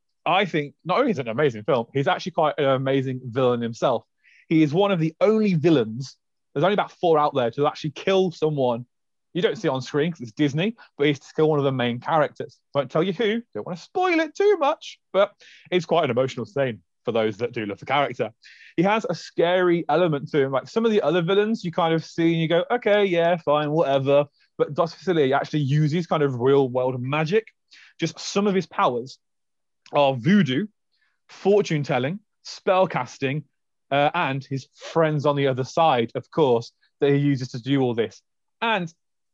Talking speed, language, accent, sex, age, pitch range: 210 wpm, English, British, male, 30-49, 135-185 Hz